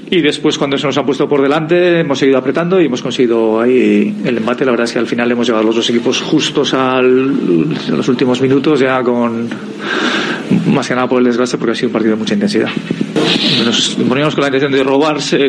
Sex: male